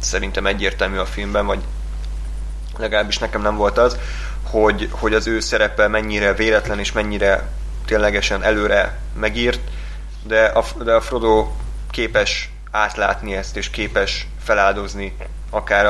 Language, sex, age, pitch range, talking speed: Hungarian, male, 20-39, 75-105 Hz, 130 wpm